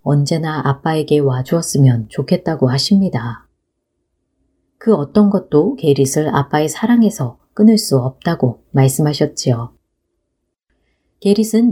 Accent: native